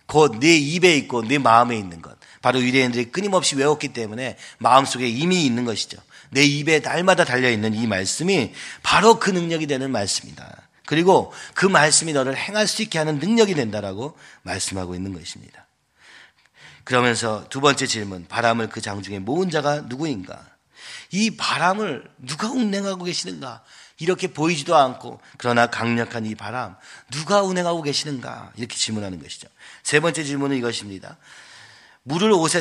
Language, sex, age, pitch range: Korean, male, 40-59, 110-160 Hz